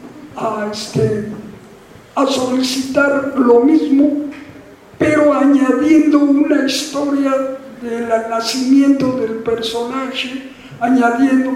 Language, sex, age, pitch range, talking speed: English, male, 50-69, 235-290 Hz, 80 wpm